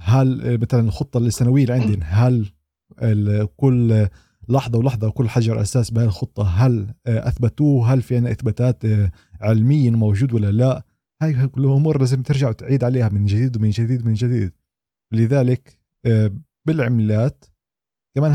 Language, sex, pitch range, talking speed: Arabic, male, 115-135 Hz, 130 wpm